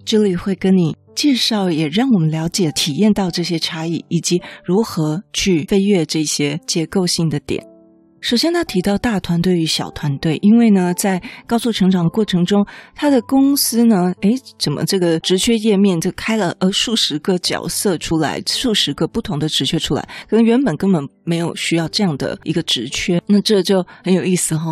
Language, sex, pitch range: Chinese, female, 165-215 Hz